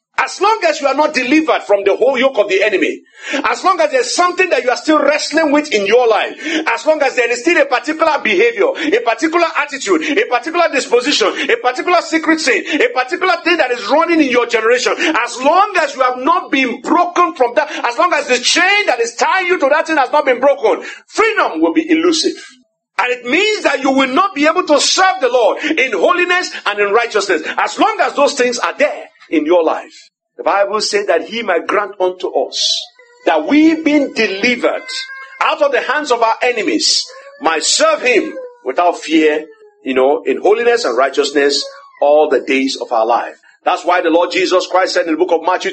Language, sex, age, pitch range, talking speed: English, male, 50-69, 220-345 Hz, 215 wpm